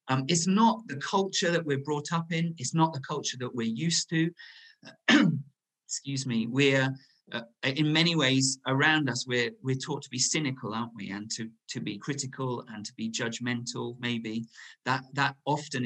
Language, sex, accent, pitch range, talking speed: English, male, British, 120-150 Hz, 180 wpm